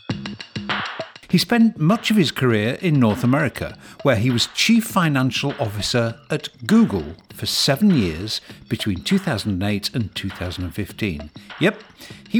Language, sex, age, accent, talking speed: English, male, 60-79, British, 125 wpm